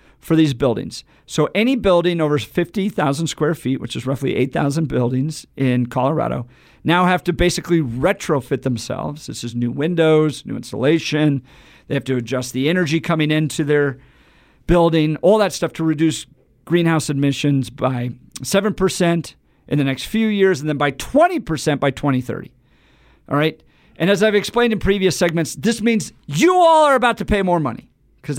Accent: American